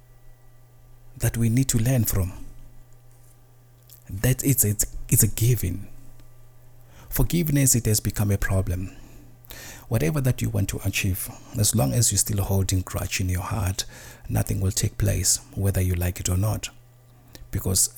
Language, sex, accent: English, male, South African